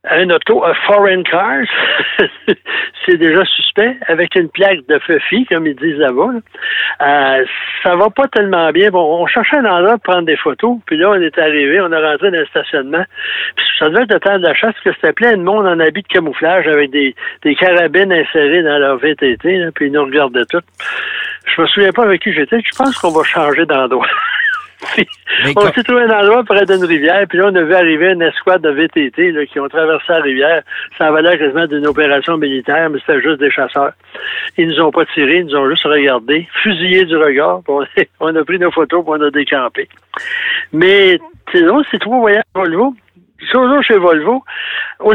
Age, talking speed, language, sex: 60-79, 210 wpm, French, male